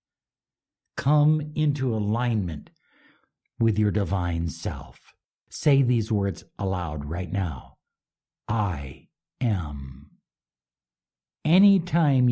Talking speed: 80 wpm